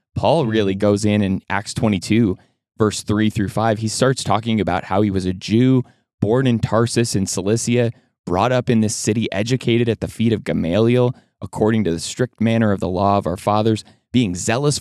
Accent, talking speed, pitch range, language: American, 200 wpm, 100-125 Hz, English